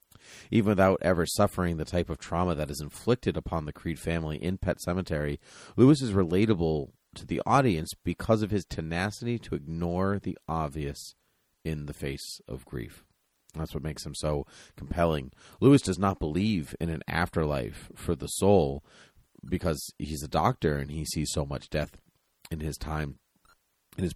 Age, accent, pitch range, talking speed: 30-49, American, 75-90 Hz, 170 wpm